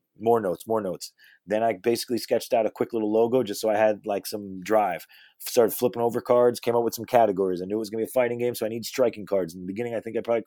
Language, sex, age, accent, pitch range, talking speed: English, male, 30-49, American, 105-120 Hz, 290 wpm